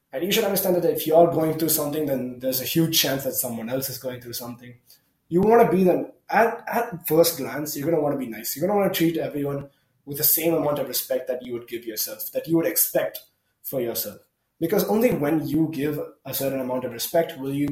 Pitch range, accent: 130-170 Hz, Indian